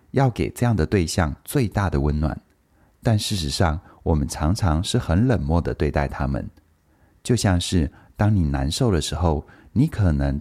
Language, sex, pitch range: Chinese, male, 75-100 Hz